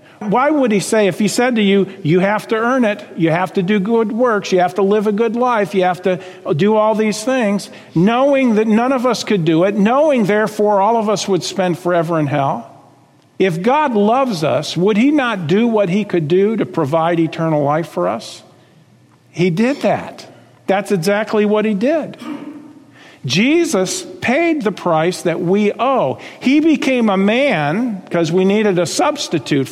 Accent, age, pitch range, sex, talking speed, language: American, 50-69, 180-235 Hz, male, 190 wpm, English